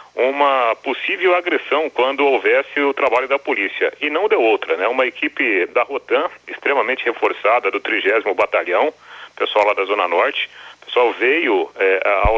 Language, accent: Portuguese, Brazilian